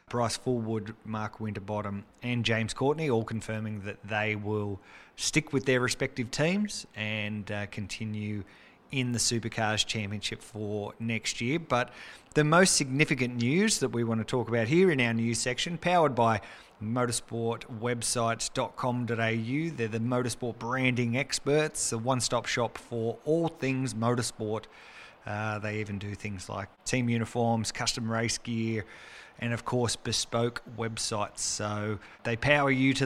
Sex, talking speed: male, 145 wpm